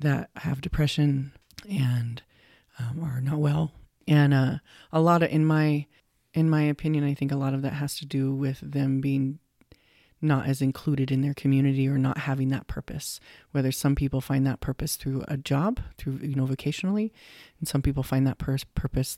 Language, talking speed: English, 190 wpm